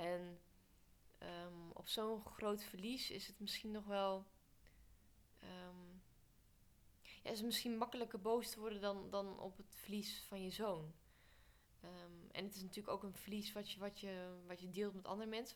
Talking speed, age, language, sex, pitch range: 180 wpm, 20-39, Dutch, female, 180-200 Hz